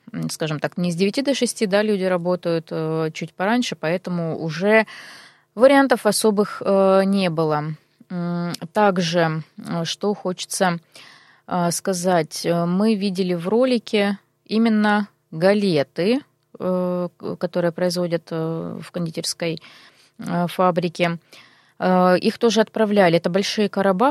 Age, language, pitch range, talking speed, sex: 20-39, Russian, 170-215 Hz, 115 wpm, female